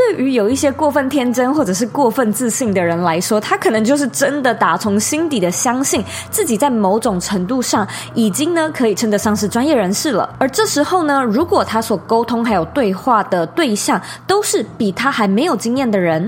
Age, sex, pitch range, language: 20-39, female, 200-275 Hz, Chinese